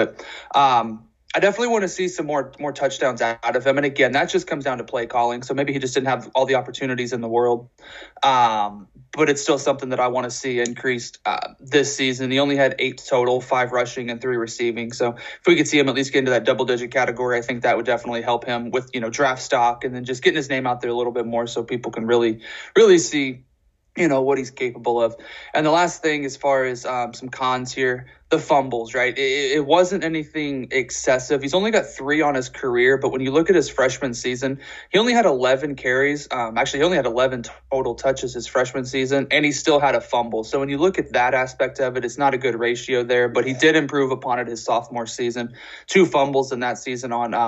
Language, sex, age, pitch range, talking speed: English, male, 20-39, 120-145 Hz, 250 wpm